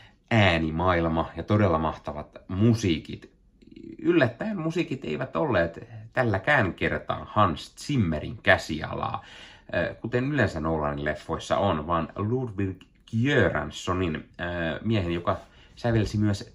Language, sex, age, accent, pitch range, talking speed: Finnish, male, 30-49, native, 85-115 Hz, 95 wpm